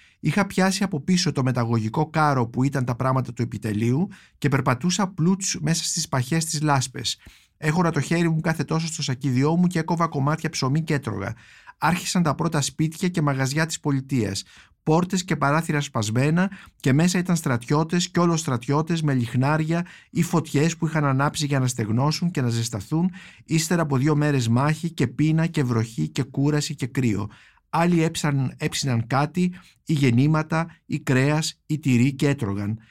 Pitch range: 120-160 Hz